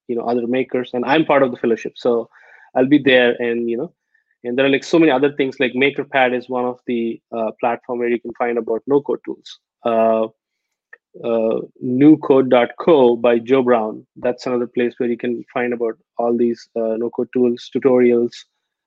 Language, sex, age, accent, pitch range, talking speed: English, male, 20-39, Indian, 120-130 Hz, 190 wpm